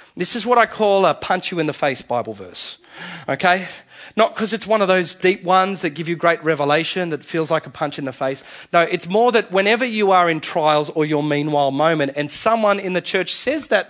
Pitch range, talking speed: 155-235 Hz, 235 wpm